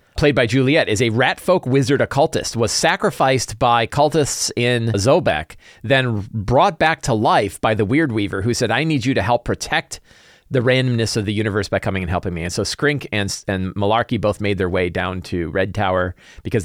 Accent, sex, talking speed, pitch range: American, male, 205 wpm, 105-150 Hz